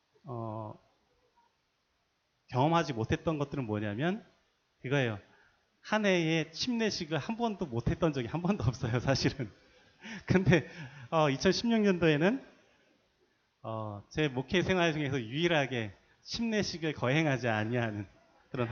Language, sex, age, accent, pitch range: Korean, male, 30-49, native, 125-175 Hz